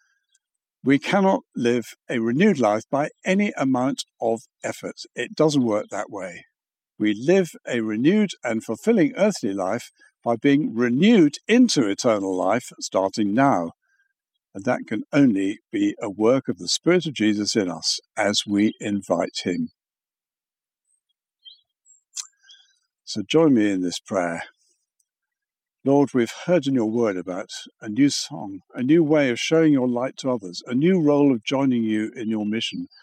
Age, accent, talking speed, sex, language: 60-79, British, 155 wpm, male, English